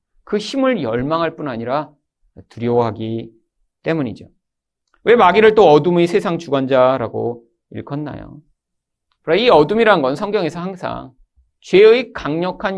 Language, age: Korean, 40-59